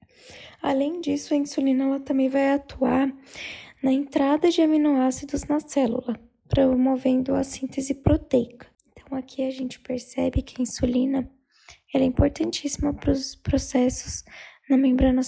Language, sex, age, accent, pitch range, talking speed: Portuguese, female, 10-29, Brazilian, 260-300 Hz, 135 wpm